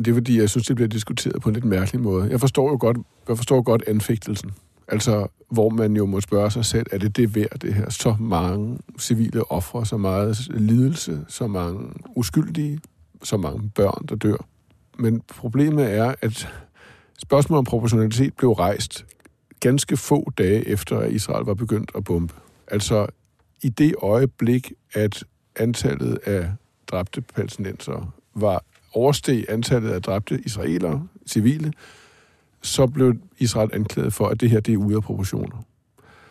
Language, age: Danish, 50-69